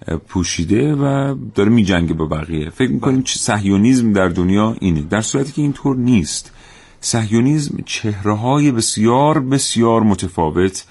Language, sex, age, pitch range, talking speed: Persian, male, 40-59, 90-120 Hz, 130 wpm